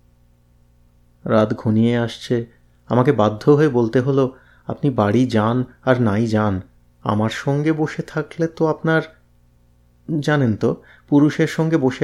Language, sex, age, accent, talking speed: Bengali, male, 30-49, native, 125 wpm